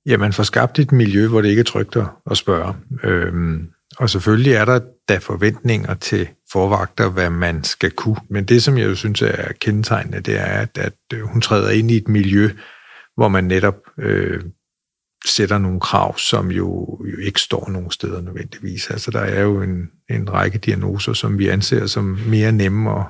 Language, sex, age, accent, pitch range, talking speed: Danish, male, 50-69, native, 95-115 Hz, 190 wpm